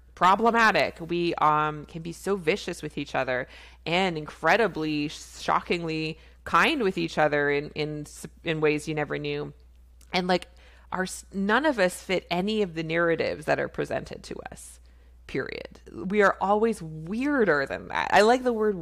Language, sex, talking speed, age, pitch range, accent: English, female, 165 wpm, 20-39, 150-200 Hz, American